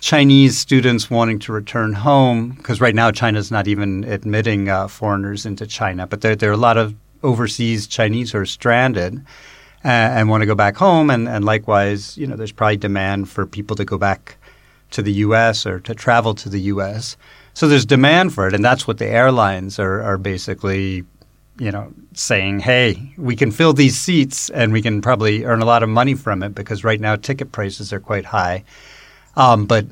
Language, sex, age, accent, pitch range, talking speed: English, male, 40-59, American, 105-125 Hz, 205 wpm